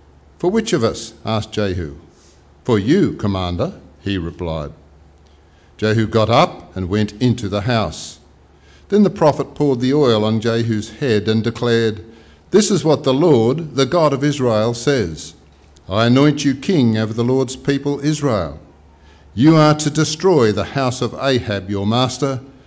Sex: male